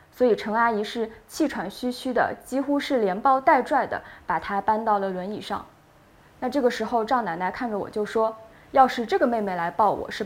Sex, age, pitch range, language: female, 20-39, 205-265 Hz, Chinese